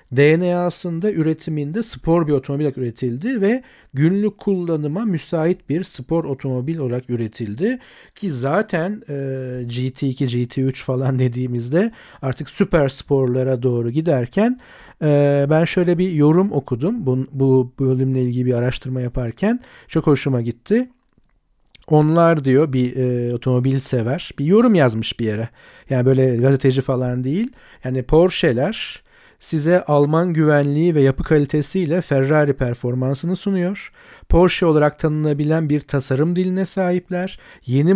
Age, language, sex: 50-69, Turkish, male